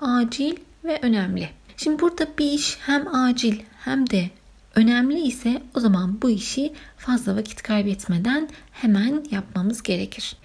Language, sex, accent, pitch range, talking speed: Turkish, female, native, 195-265 Hz, 130 wpm